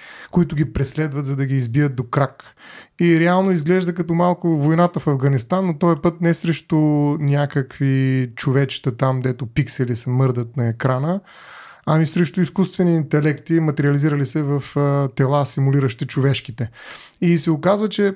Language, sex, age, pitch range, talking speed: Bulgarian, male, 20-39, 145-180 Hz, 150 wpm